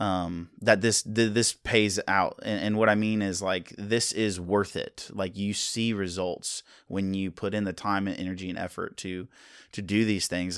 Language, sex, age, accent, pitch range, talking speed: English, male, 20-39, American, 95-120 Hz, 210 wpm